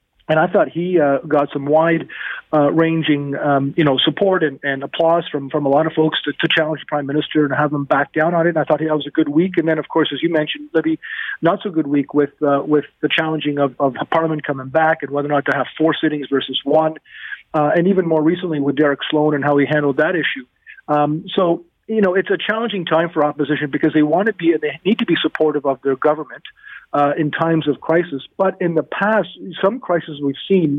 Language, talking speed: English, 250 wpm